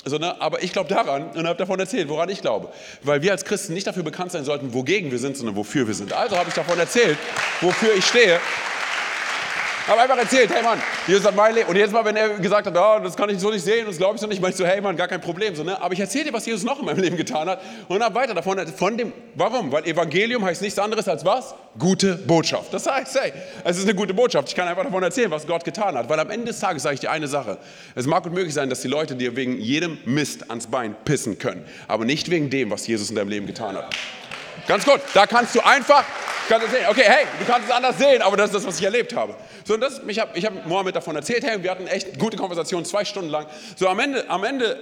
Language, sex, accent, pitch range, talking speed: German, male, German, 165-215 Hz, 270 wpm